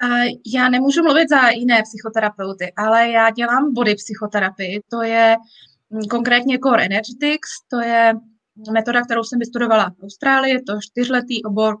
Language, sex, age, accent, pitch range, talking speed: Czech, female, 20-39, native, 220-260 Hz, 140 wpm